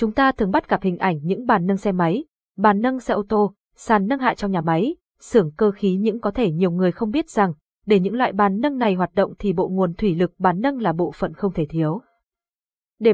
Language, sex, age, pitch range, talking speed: Vietnamese, female, 20-39, 185-235 Hz, 255 wpm